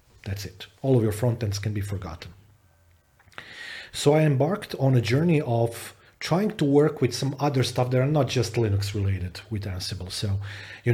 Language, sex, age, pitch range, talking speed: English, male, 40-59, 105-125 Hz, 185 wpm